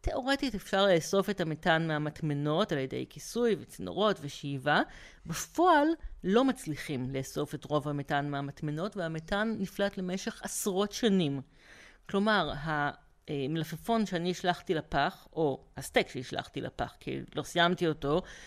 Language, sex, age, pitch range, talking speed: Hebrew, female, 40-59, 150-195 Hz, 120 wpm